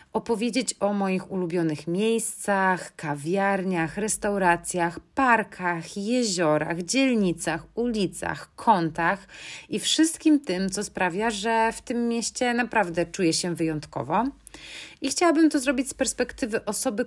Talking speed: 115 wpm